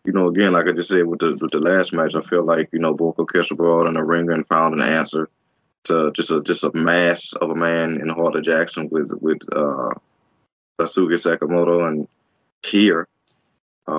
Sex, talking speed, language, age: male, 195 wpm, English, 20-39